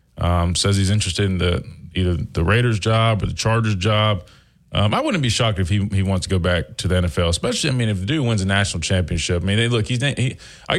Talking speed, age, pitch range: 255 wpm, 20-39, 95-120 Hz